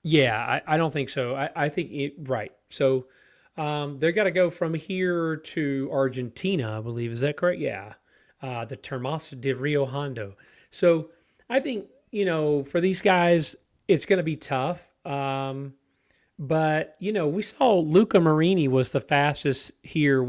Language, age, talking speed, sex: English, 30-49, 165 wpm, male